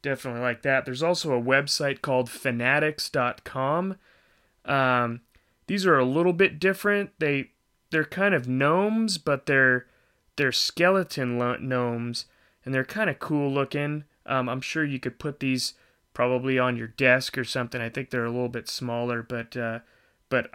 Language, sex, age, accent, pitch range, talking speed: English, male, 30-49, American, 120-145 Hz, 160 wpm